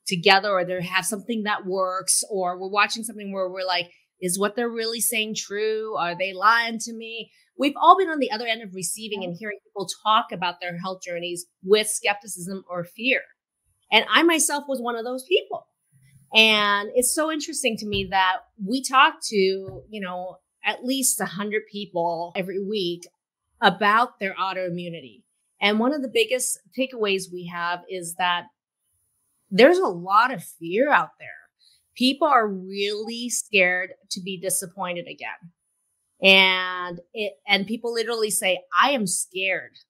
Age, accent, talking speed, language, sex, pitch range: 30-49, American, 165 wpm, English, female, 185-235 Hz